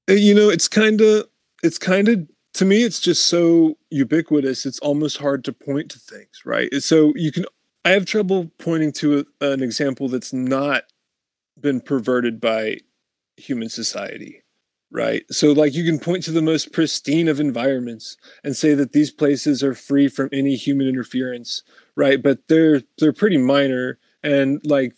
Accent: American